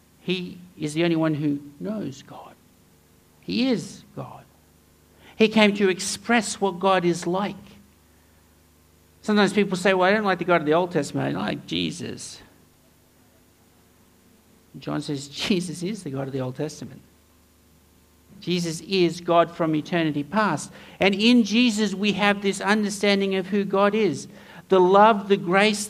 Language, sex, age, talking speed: English, male, 60-79, 155 wpm